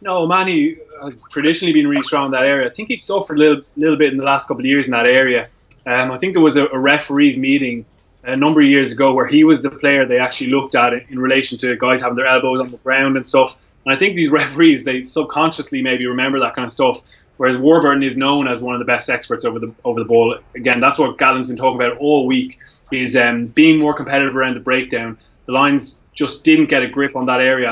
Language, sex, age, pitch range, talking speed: English, male, 20-39, 125-145 Hz, 260 wpm